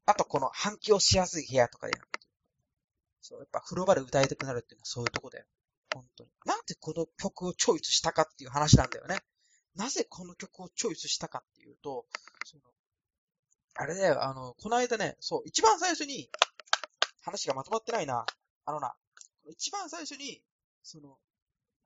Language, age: Japanese, 20-39